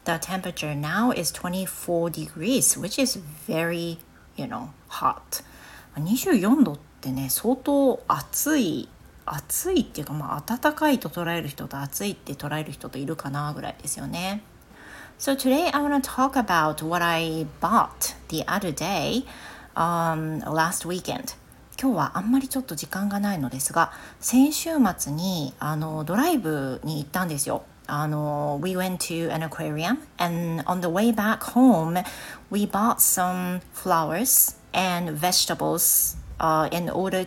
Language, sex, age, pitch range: Japanese, female, 40-59, 155-235 Hz